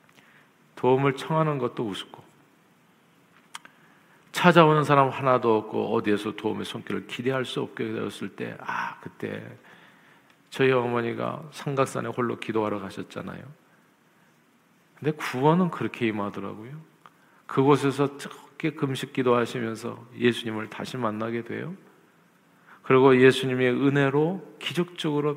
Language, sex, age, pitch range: Korean, male, 50-69, 115-145 Hz